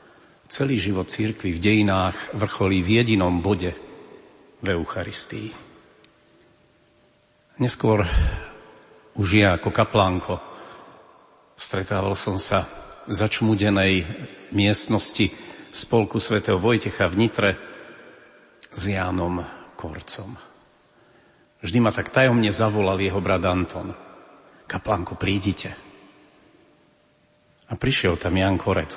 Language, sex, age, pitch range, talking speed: Slovak, male, 50-69, 90-105 Hz, 90 wpm